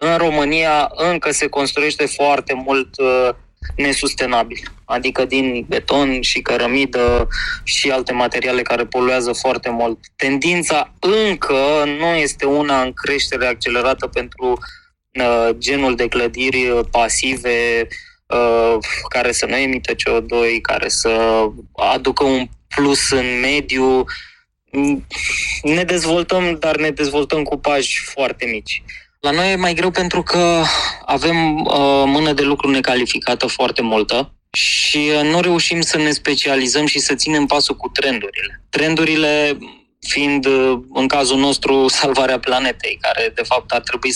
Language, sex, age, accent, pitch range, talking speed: Romanian, male, 20-39, native, 130-155 Hz, 130 wpm